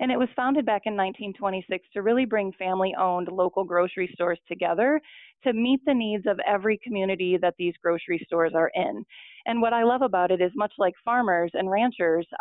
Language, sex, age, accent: English, female, 30-49, American